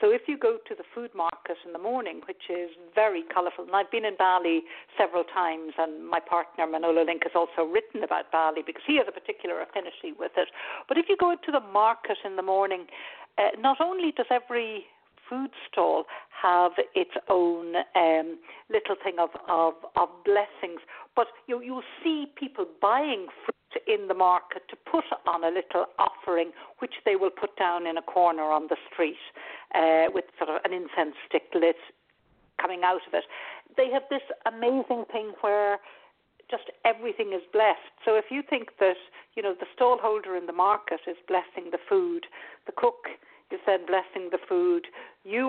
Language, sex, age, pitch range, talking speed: English, female, 60-79, 175-285 Hz, 185 wpm